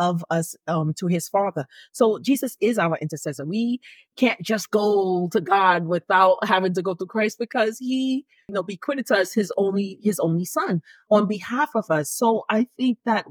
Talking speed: 200 wpm